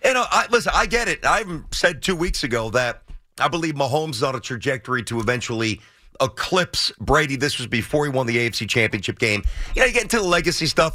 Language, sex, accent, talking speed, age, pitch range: English, male, American, 230 wpm, 40-59, 135-210 Hz